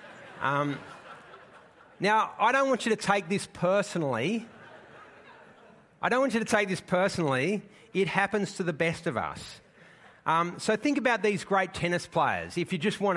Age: 40-59